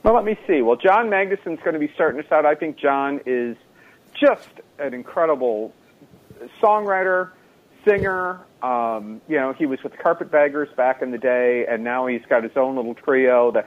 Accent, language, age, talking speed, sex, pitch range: American, English, 50-69, 185 wpm, male, 115-150 Hz